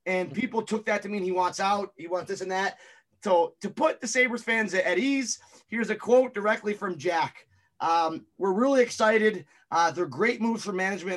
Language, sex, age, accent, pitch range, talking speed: English, male, 30-49, American, 175-210 Hz, 205 wpm